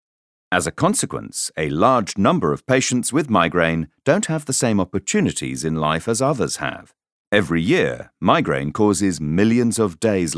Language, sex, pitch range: English, male, 80-115 Hz